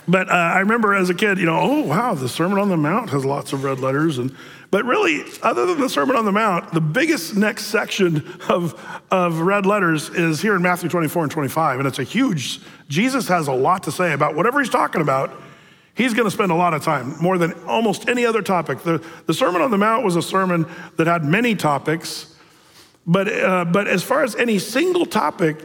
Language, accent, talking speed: English, American, 225 wpm